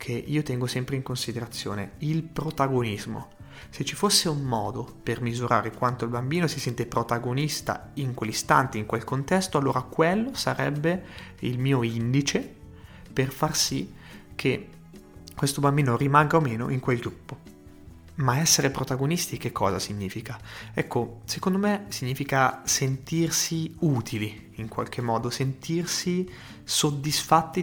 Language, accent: Italian, native